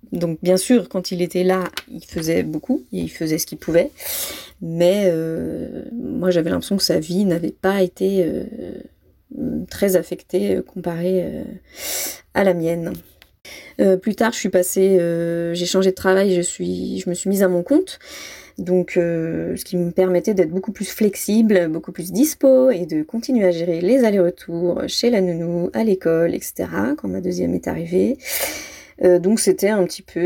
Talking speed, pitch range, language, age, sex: 180 wpm, 170-190 Hz, French, 20-39, female